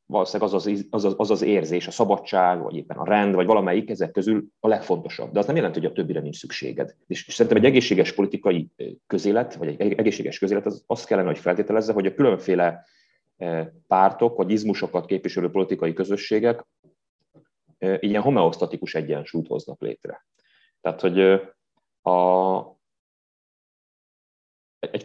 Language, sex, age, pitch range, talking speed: Hungarian, male, 30-49, 90-105 Hz, 150 wpm